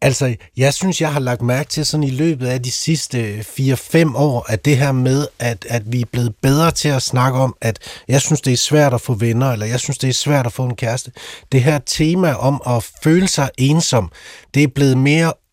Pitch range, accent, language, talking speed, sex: 120-150 Hz, native, Danish, 235 wpm, male